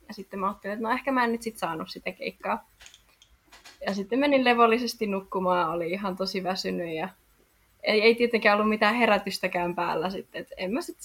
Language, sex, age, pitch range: Finnish, female, 20-39, 190-245 Hz